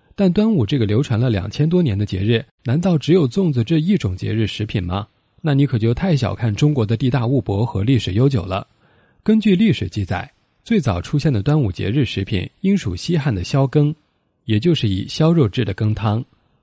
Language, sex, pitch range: Chinese, male, 100-150 Hz